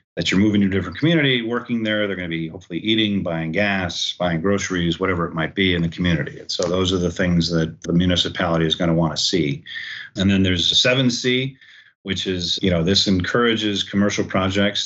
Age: 40-59